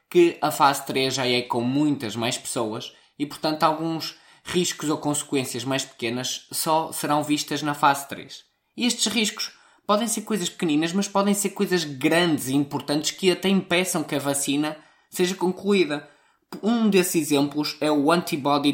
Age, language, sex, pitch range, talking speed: 20-39, Portuguese, male, 145-180 Hz, 165 wpm